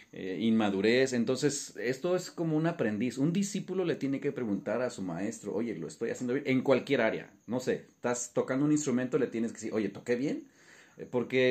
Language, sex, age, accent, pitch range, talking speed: Spanish, male, 40-59, Mexican, 120-170 Hz, 200 wpm